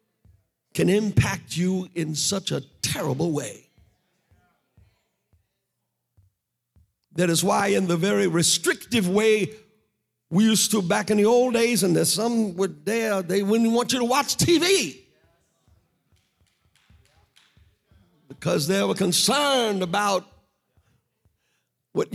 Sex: male